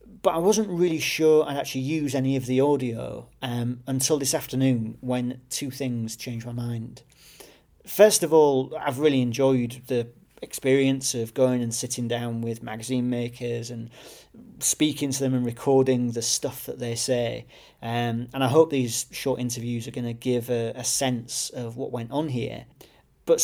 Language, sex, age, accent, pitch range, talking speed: English, male, 40-59, British, 120-135 Hz, 175 wpm